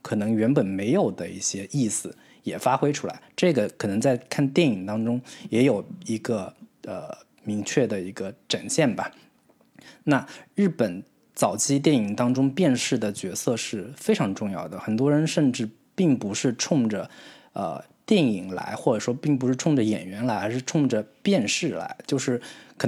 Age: 20-39